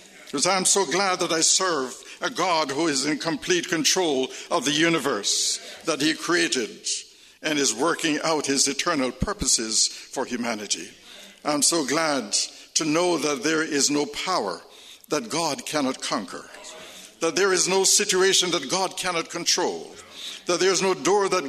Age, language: 60-79, English